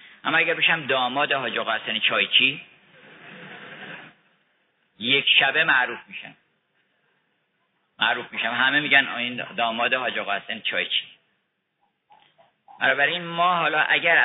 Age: 50-69